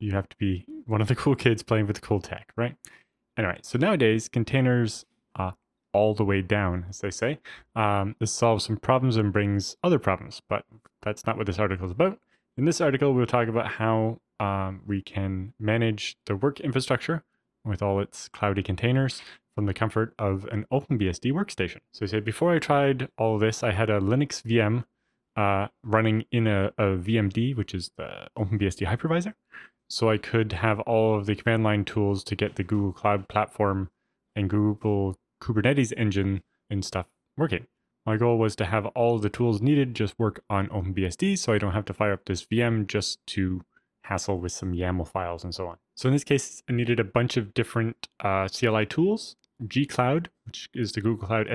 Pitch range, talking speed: 100-120 Hz, 200 wpm